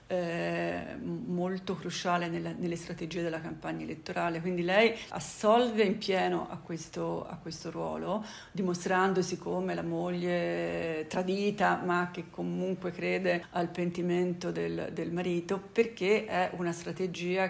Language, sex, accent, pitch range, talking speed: Italian, female, native, 165-185 Hz, 125 wpm